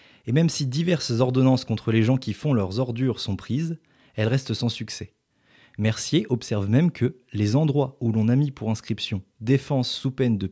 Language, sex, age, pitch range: French, male, 20-39, 110-135 Hz